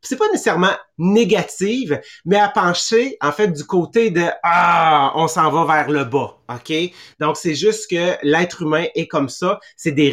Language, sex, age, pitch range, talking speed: English, male, 30-49, 145-185 Hz, 195 wpm